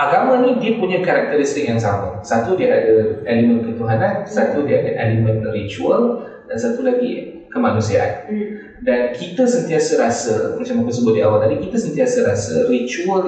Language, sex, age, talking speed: Malay, male, 20-39, 160 wpm